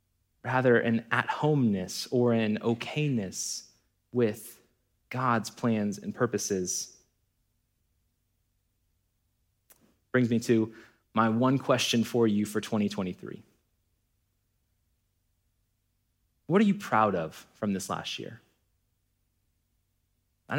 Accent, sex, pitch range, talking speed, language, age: American, male, 100-130 Hz, 90 wpm, English, 20-39